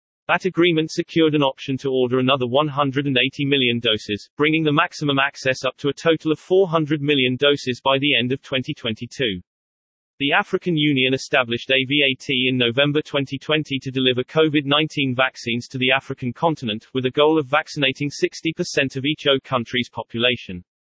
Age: 40-59